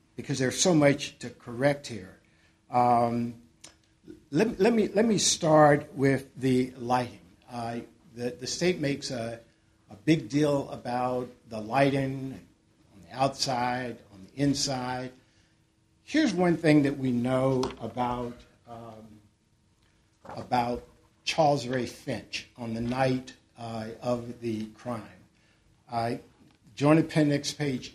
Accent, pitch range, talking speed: American, 115-145 Hz, 130 wpm